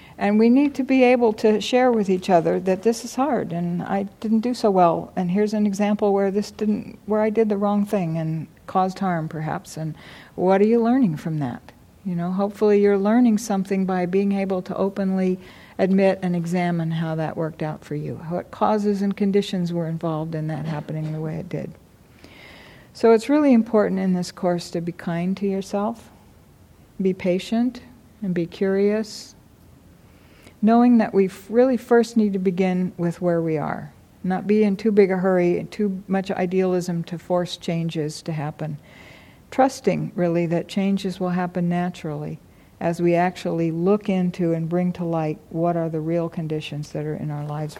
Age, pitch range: 60-79, 170-210 Hz